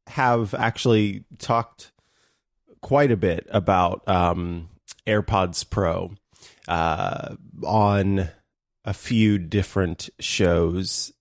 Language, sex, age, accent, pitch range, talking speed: English, male, 20-39, American, 90-115 Hz, 85 wpm